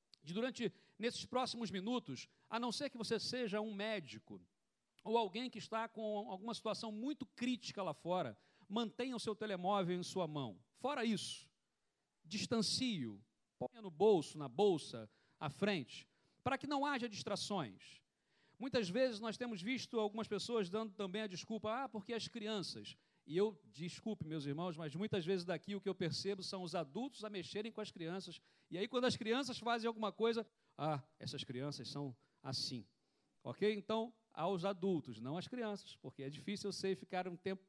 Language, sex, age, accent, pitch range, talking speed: Portuguese, male, 50-69, Brazilian, 160-225 Hz, 175 wpm